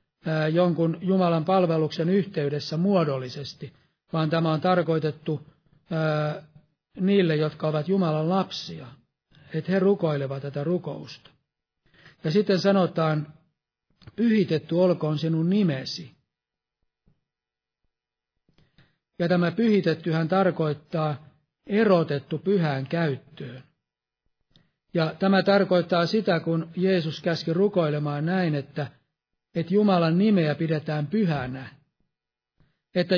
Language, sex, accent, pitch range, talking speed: Finnish, male, native, 150-180 Hz, 90 wpm